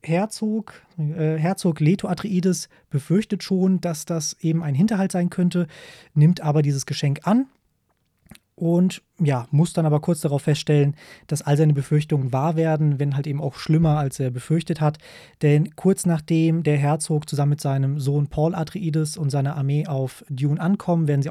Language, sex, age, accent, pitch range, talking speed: German, male, 20-39, German, 145-170 Hz, 165 wpm